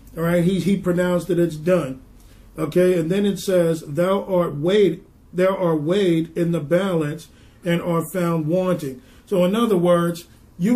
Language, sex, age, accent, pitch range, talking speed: English, male, 50-69, American, 175-210 Hz, 175 wpm